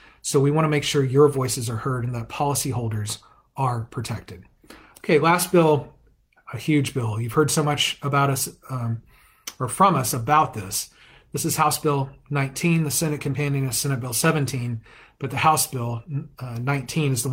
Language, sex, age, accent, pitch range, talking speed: English, male, 40-59, American, 130-155 Hz, 180 wpm